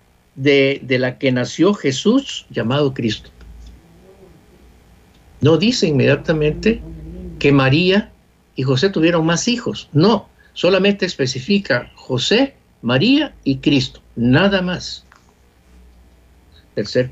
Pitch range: 115-175 Hz